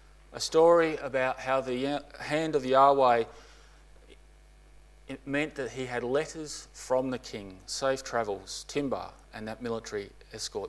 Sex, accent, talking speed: male, Australian, 135 wpm